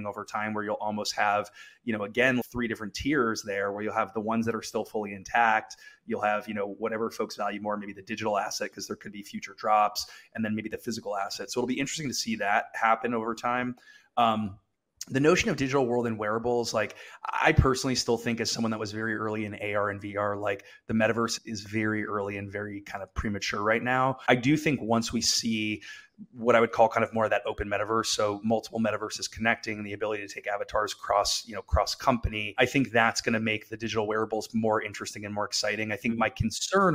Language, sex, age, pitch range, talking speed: English, male, 20-39, 105-115 Hz, 230 wpm